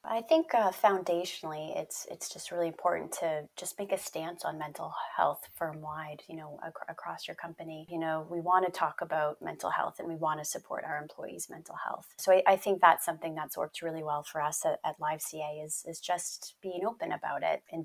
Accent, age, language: American, 30-49, English